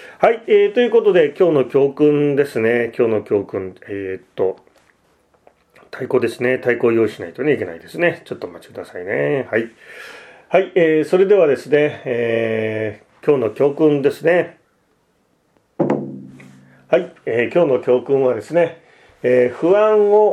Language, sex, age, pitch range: Japanese, male, 40-59, 125-165 Hz